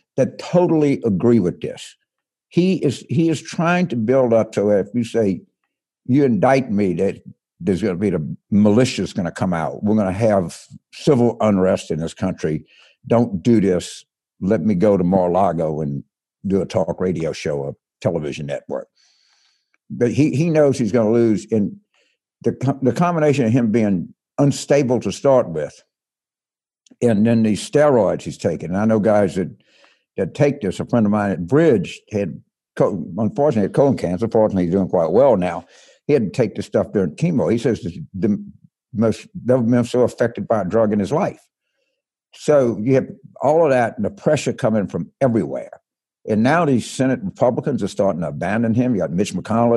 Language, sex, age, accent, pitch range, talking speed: English, male, 60-79, American, 105-140 Hz, 185 wpm